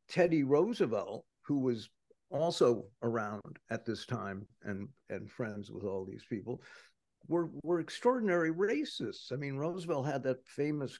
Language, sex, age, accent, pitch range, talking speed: English, male, 50-69, American, 115-165 Hz, 140 wpm